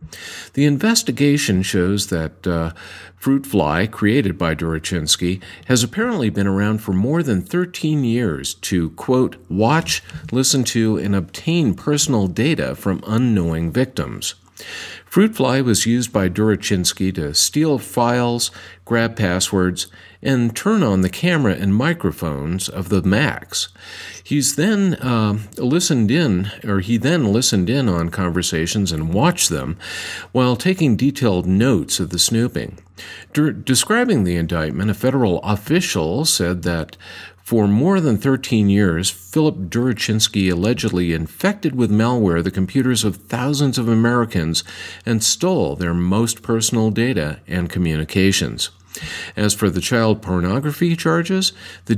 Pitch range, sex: 95-130 Hz, male